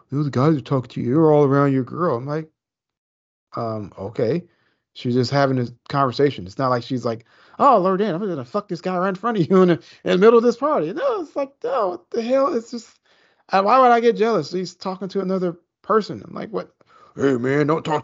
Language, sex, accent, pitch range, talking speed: English, male, American, 125-180 Hz, 255 wpm